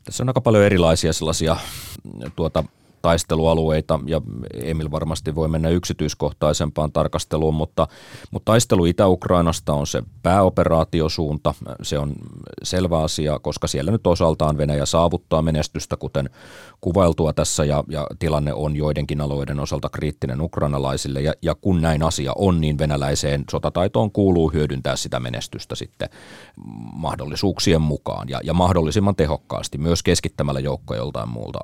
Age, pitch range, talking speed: 30-49, 70-85 Hz, 135 wpm